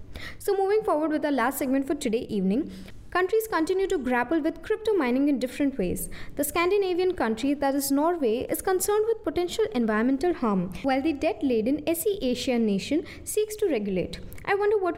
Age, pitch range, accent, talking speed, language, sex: 20-39, 240-360 Hz, Indian, 175 wpm, English, female